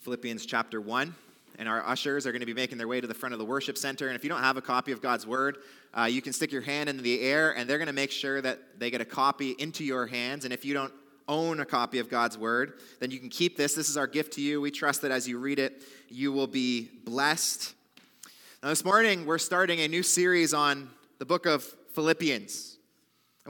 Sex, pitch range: male, 130-175 Hz